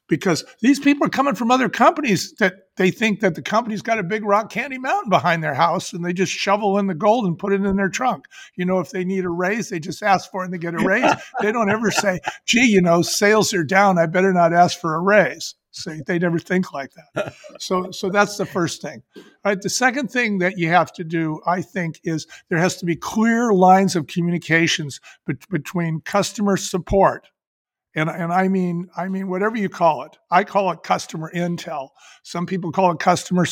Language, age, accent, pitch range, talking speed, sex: English, 50-69, American, 170-205 Hz, 225 wpm, male